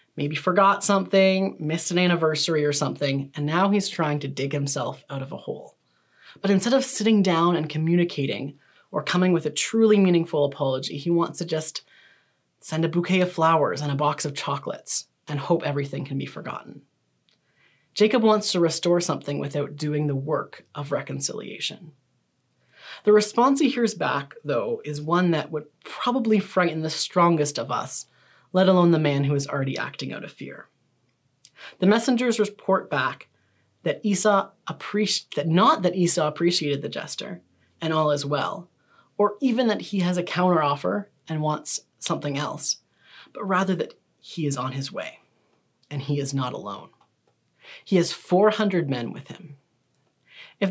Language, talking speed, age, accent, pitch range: English, 165 wpm, 30-49, American, 145-195 Hz